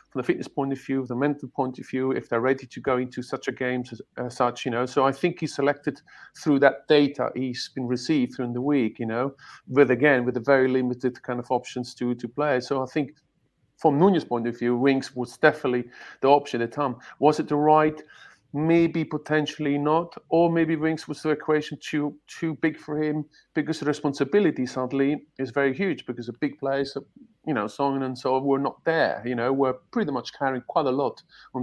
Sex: male